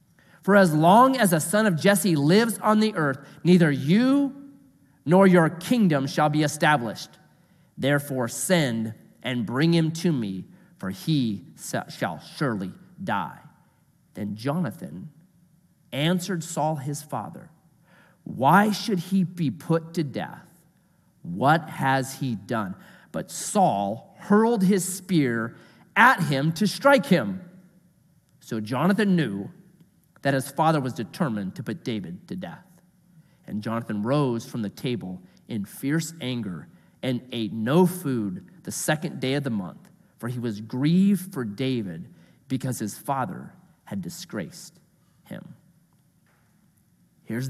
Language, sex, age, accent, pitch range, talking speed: English, male, 30-49, American, 140-180 Hz, 130 wpm